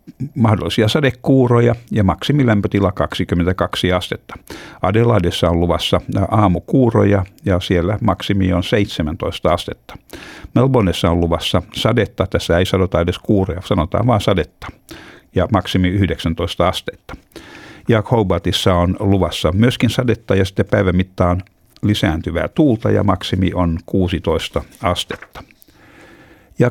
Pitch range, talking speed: 90-115 Hz, 110 wpm